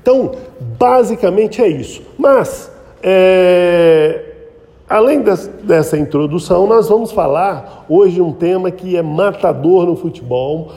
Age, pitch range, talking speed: 50-69, 160-200 Hz, 125 wpm